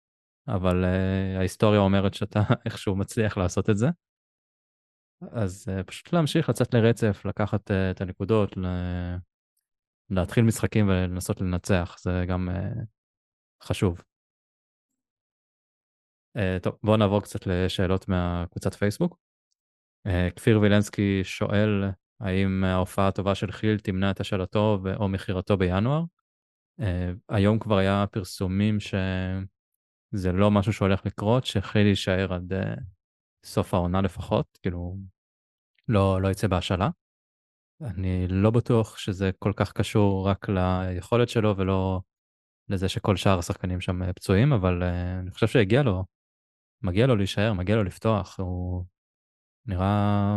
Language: Hebrew